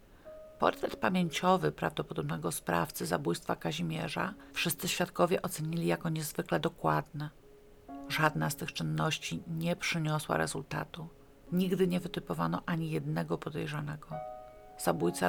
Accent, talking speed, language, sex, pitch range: native, 100 wpm, Polish, female, 140-175 Hz